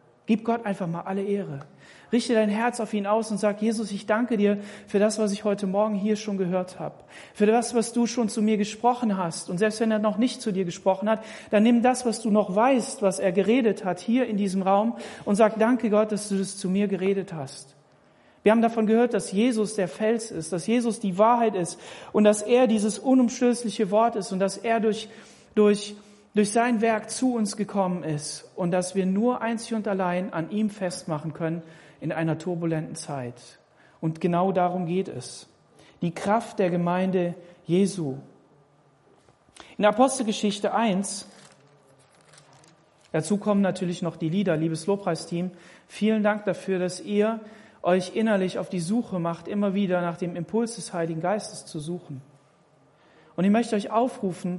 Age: 40-59